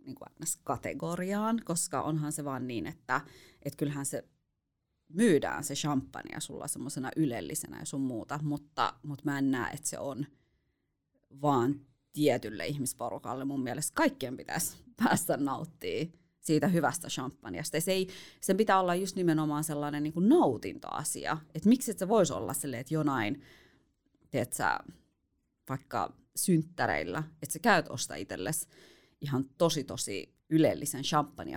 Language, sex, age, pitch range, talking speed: Finnish, female, 30-49, 140-175 Hz, 130 wpm